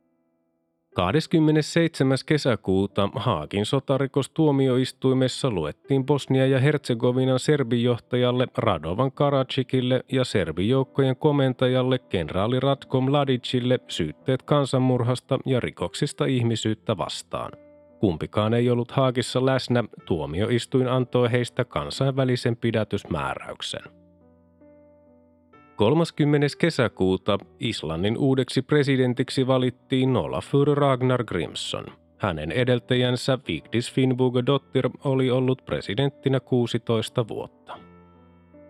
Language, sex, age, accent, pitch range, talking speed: Finnish, male, 30-49, native, 115-135 Hz, 80 wpm